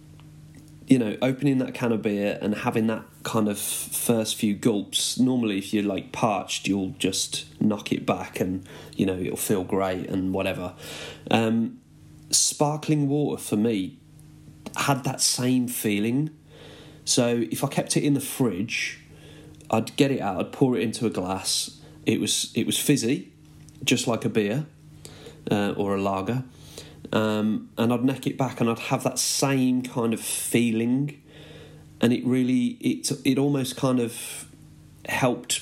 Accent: British